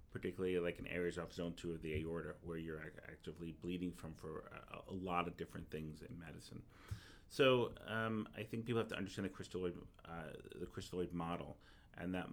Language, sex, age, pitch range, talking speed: English, male, 30-49, 85-95 Hz, 195 wpm